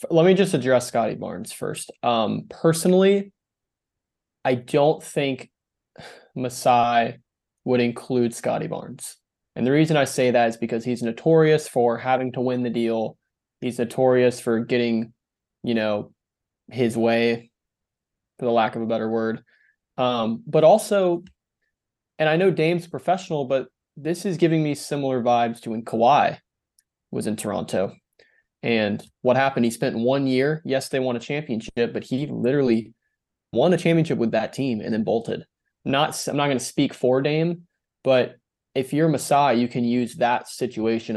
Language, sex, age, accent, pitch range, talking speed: English, male, 20-39, American, 115-145 Hz, 160 wpm